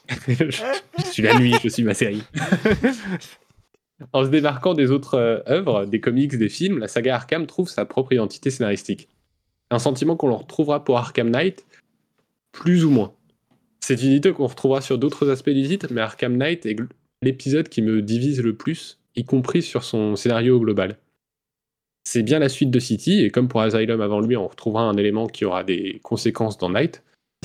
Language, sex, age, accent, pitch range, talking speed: French, male, 10-29, French, 110-140 Hz, 185 wpm